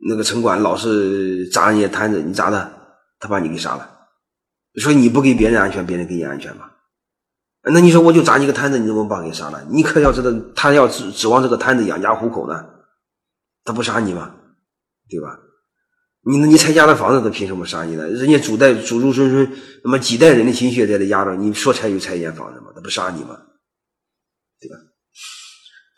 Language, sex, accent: Chinese, male, native